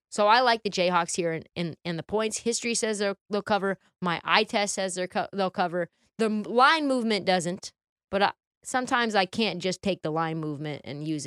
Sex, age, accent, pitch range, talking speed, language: female, 20-39, American, 160-200 Hz, 215 wpm, English